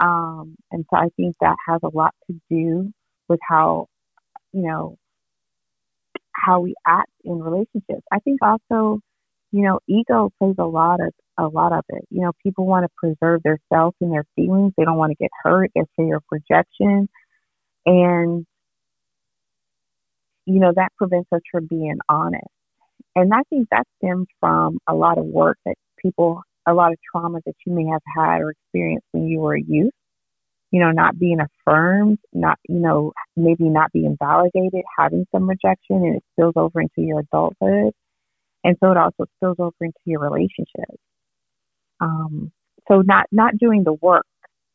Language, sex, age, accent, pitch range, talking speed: English, female, 30-49, American, 155-185 Hz, 175 wpm